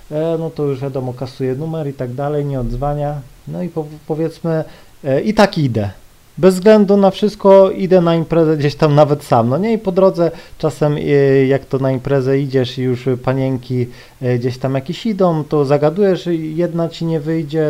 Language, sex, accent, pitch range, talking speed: Polish, male, native, 135-175 Hz, 175 wpm